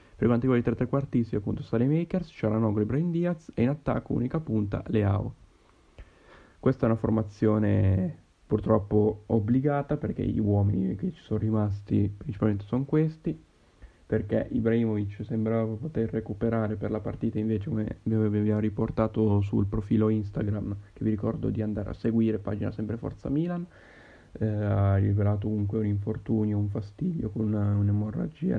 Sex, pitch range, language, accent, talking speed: male, 105-115 Hz, Italian, native, 155 wpm